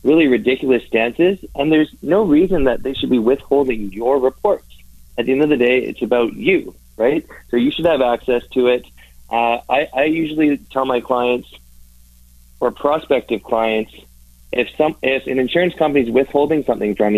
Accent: American